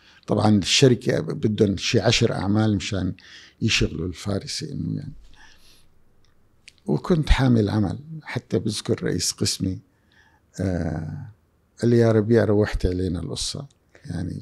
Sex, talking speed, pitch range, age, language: male, 115 wpm, 90-110 Hz, 50-69, Arabic